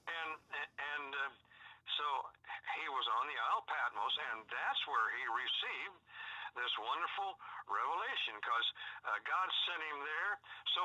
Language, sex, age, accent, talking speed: English, male, 60-79, American, 140 wpm